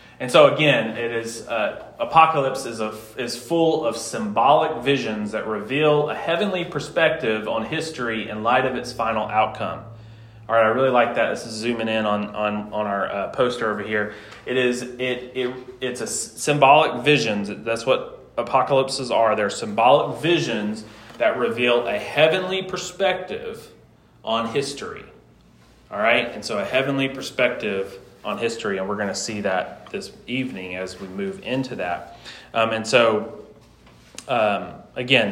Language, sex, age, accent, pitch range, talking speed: English, male, 30-49, American, 105-135 Hz, 160 wpm